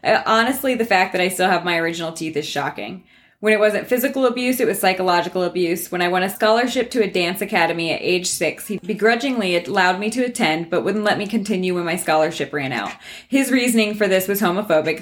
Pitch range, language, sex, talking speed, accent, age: 165-205 Hz, English, female, 220 wpm, American, 20-39